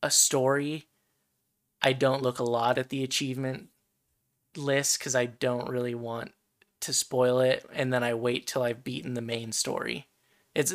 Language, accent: English, American